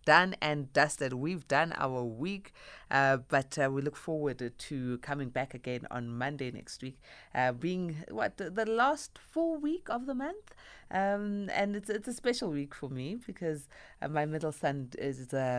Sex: female